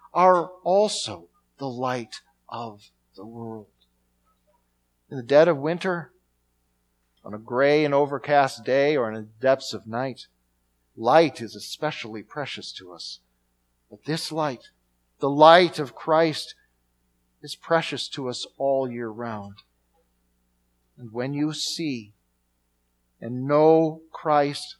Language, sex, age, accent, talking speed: English, male, 50-69, American, 125 wpm